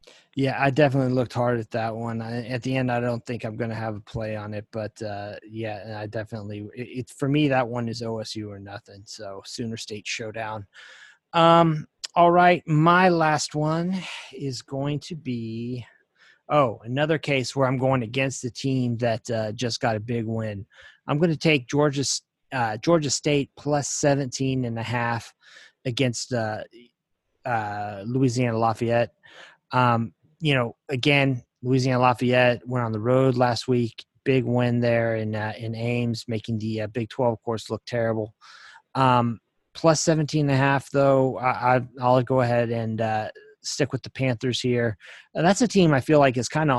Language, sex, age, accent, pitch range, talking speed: English, male, 20-39, American, 115-135 Hz, 180 wpm